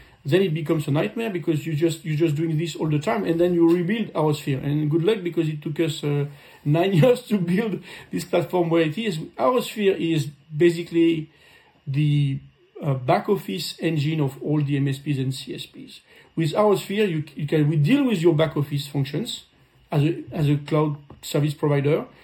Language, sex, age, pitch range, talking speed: German, male, 40-59, 150-175 Hz, 195 wpm